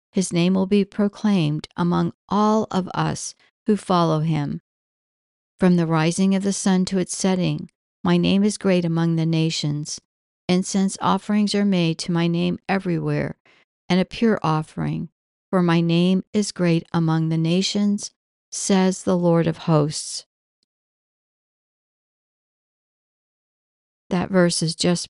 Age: 60-79